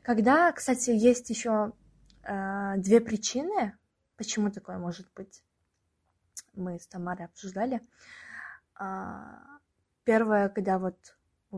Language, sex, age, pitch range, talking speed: Russian, female, 20-39, 180-230 Hz, 105 wpm